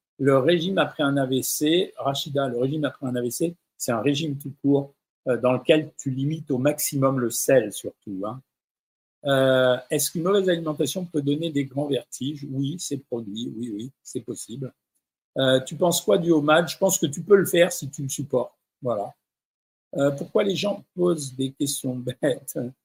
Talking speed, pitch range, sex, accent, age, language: 180 wpm, 135-170 Hz, male, French, 50-69, French